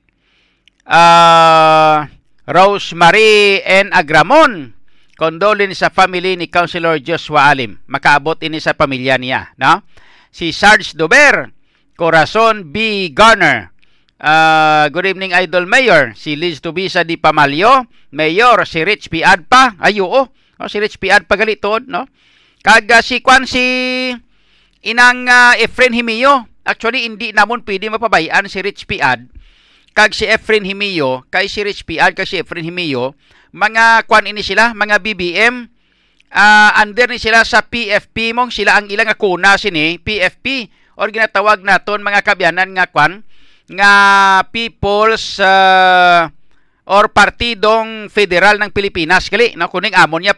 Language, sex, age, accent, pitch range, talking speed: English, male, 50-69, Filipino, 170-220 Hz, 135 wpm